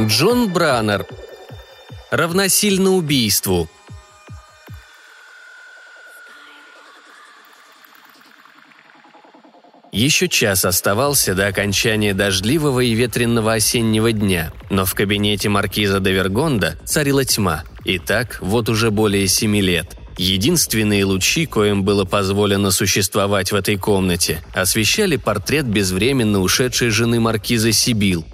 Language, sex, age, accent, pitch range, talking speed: Russian, male, 20-39, native, 95-125 Hz, 95 wpm